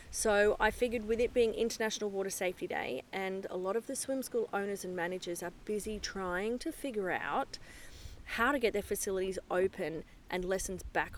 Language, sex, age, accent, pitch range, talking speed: English, female, 30-49, Australian, 185-225 Hz, 190 wpm